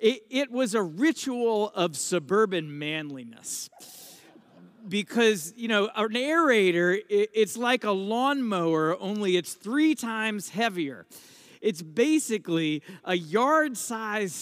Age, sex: 50-69, male